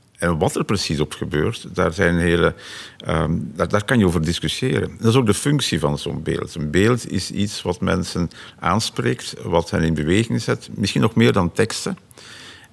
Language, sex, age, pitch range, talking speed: Dutch, male, 50-69, 85-105 Hz, 180 wpm